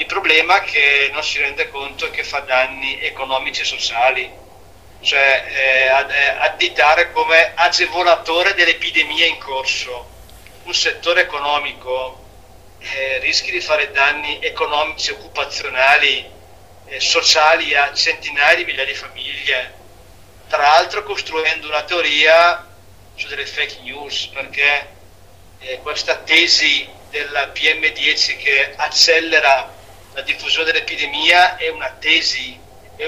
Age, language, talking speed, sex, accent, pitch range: 50-69, Italian, 120 wpm, male, native, 135-185 Hz